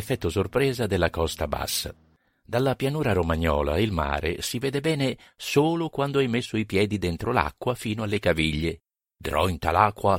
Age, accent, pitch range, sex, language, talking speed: 50-69, native, 80-110 Hz, male, Italian, 155 wpm